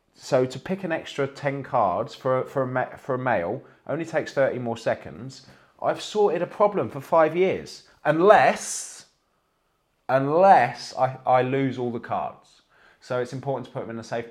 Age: 30-49